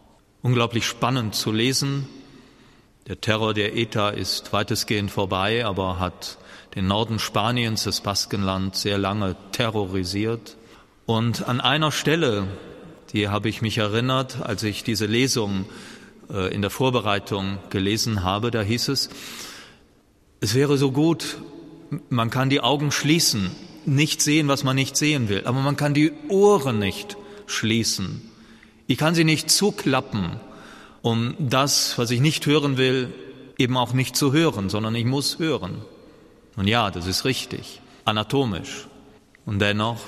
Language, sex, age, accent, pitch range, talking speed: German, male, 40-59, German, 105-140 Hz, 140 wpm